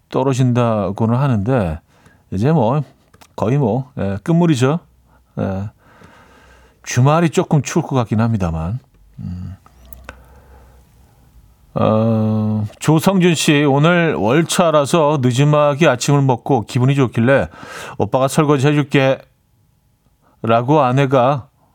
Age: 40-59